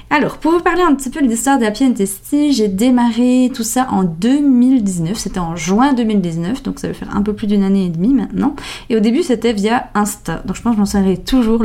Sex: female